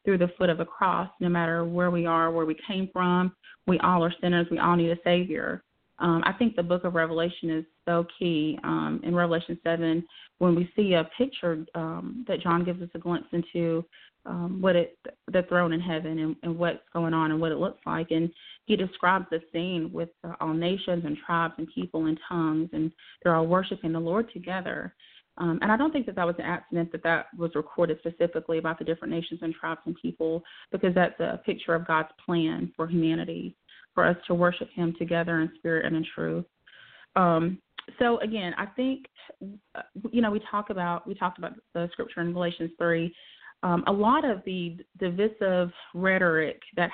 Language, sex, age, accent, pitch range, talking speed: English, female, 30-49, American, 165-185 Hz, 200 wpm